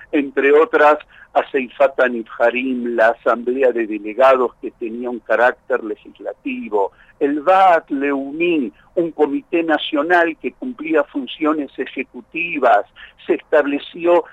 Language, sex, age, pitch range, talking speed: Spanish, male, 60-79, 135-210 Hz, 105 wpm